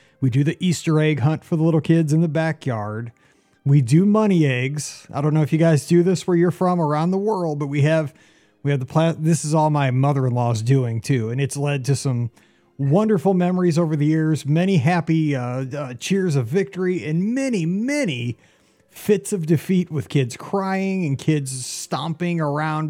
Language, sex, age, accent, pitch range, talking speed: English, male, 30-49, American, 130-165 Hz, 195 wpm